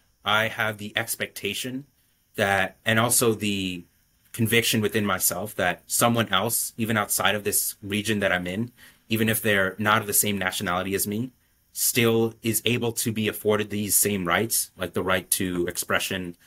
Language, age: English, 30-49